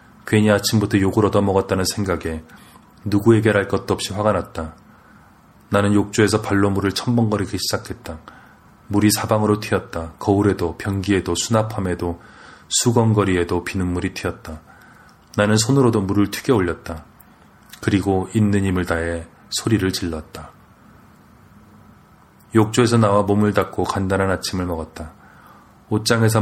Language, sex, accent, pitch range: Korean, male, native, 90-105 Hz